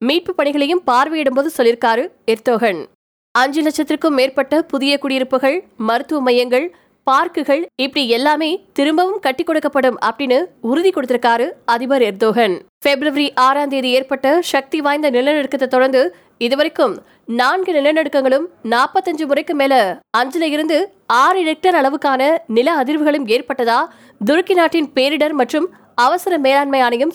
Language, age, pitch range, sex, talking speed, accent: Tamil, 20-39, 255-310 Hz, female, 110 wpm, native